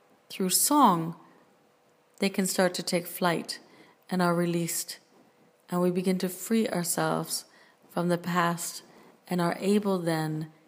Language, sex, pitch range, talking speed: English, female, 165-200 Hz, 135 wpm